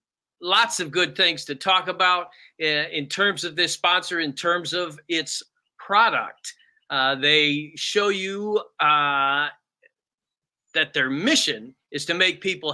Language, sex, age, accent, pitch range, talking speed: English, male, 40-59, American, 150-185 Hz, 135 wpm